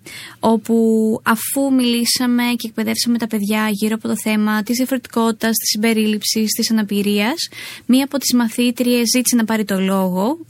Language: Greek